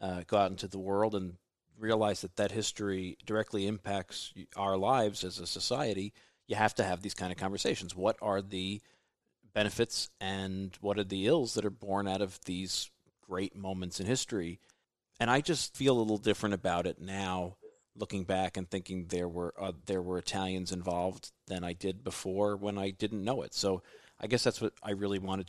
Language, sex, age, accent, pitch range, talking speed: English, male, 40-59, American, 90-105 Hz, 190 wpm